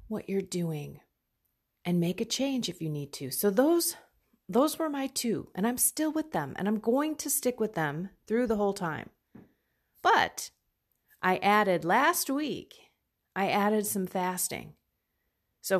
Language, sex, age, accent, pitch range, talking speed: English, female, 30-49, American, 145-210 Hz, 165 wpm